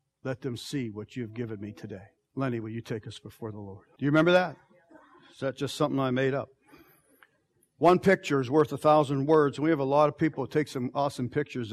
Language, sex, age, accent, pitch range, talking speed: English, male, 50-69, American, 135-165 Hz, 235 wpm